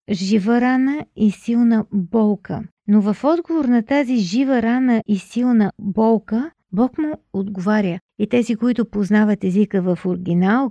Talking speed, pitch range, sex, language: 140 wpm, 205-250 Hz, female, Bulgarian